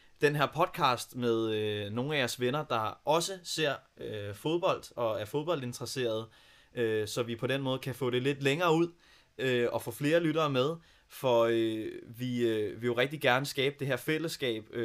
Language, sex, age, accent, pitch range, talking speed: Danish, male, 20-39, native, 115-140 Hz, 165 wpm